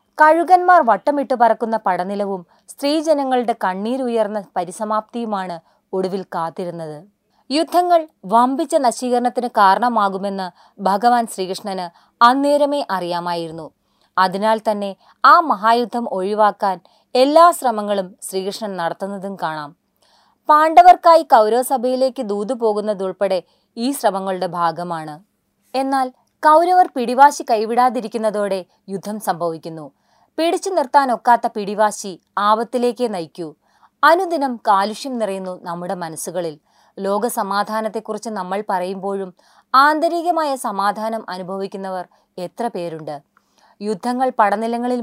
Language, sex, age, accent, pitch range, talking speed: Malayalam, female, 20-39, native, 190-255 Hz, 80 wpm